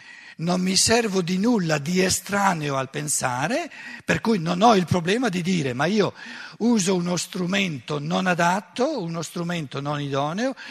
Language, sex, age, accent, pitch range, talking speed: Italian, male, 60-79, native, 130-175 Hz, 155 wpm